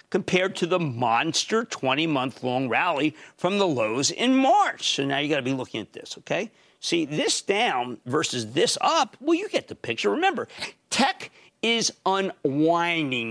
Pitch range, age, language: 135-205 Hz, 50-69, English